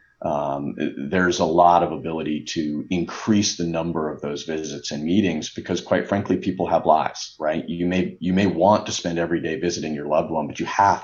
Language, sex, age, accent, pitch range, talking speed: English, male, 40-59, American, 80-95 Hz, 205 wpm